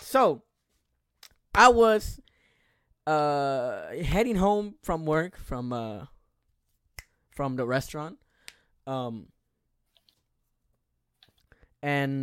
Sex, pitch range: male, 120-145 Hz